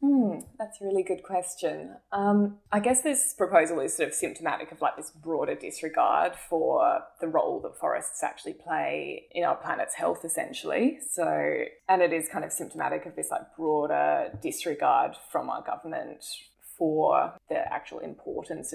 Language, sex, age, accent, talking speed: English, female, 20-39, Australian, 165 wpm